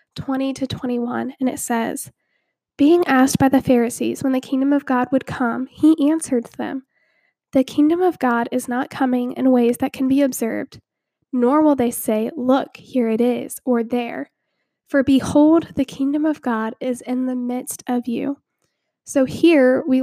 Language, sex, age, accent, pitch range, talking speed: English, female, 10-29, American, 255-285 Hz, 175 wpm